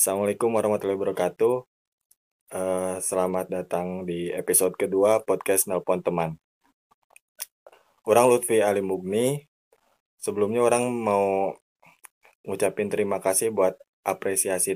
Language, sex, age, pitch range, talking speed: Indonesian, male, 20-39, 95-115 Hz, 95 wpm